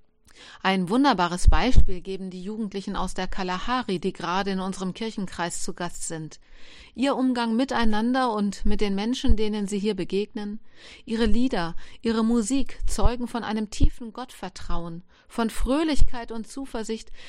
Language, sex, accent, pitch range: German, female, German, 185-235 Hz